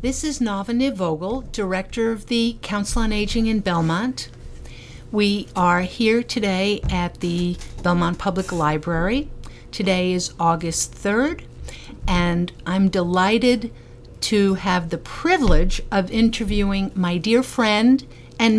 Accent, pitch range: American, 175-230 Hz